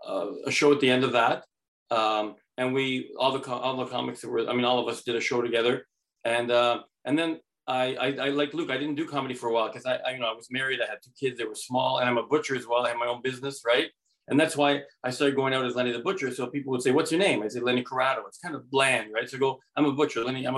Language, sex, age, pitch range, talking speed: English, male, 40-59, 120-140 Hz, 305 wpm